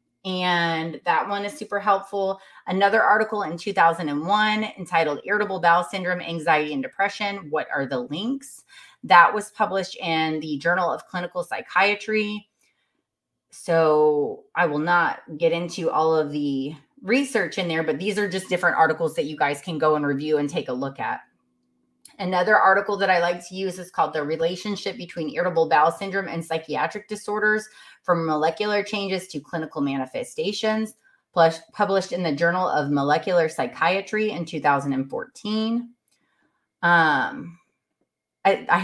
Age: 30-49